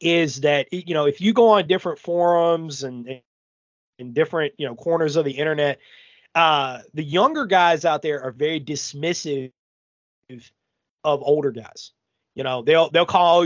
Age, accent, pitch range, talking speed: 30-49, American, 135-175 Hz, 160 wpm